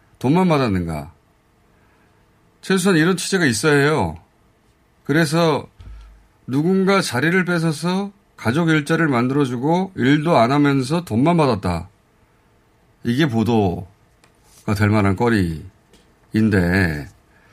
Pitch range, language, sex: 105-155 Hz, Korean, male